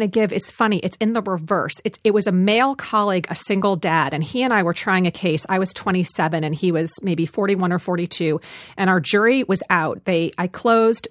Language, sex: English, female